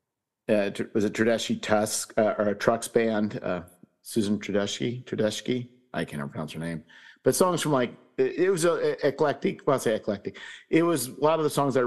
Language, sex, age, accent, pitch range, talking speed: English, male, 50-69, American, 100-145 Hz, 205 wpm